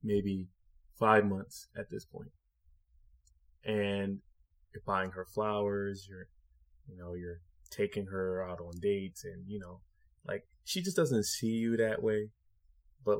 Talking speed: 145 wpm